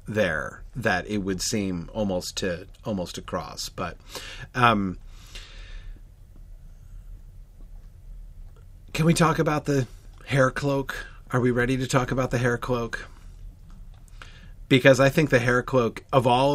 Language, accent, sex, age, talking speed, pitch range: English, American, male, 40-59, 125 wpm, 95-145 Hz